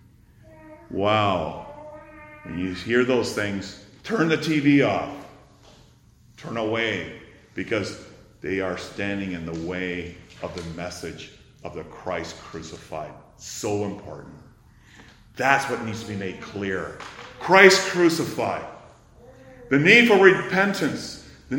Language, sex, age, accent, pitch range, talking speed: English, male, 40-59, American, 105-135 Hz, 115 wpm